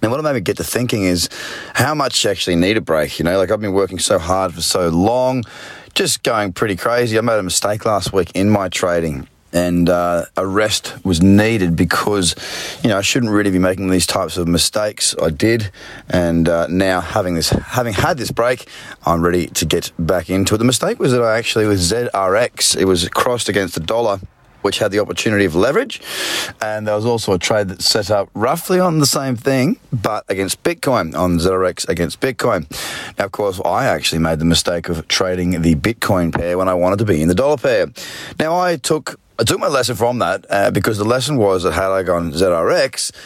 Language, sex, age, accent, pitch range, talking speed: English, male, 20-39, Australian, 90-115 Hz, 220 wpm